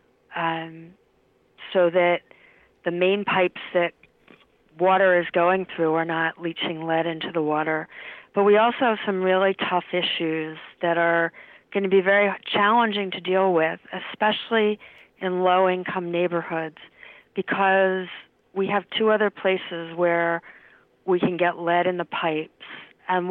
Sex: female